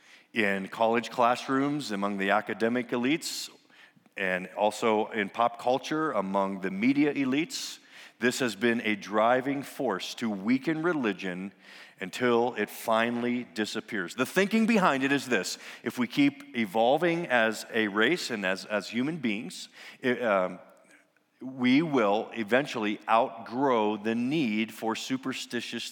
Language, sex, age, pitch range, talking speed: English, male, 40-59, 100-135 Hz, 130 wpm